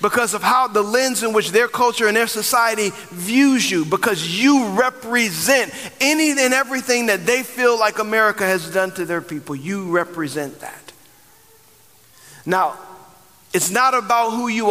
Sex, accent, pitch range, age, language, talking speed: male, American, 185-230 Hz, 40-59, English, 160 wpm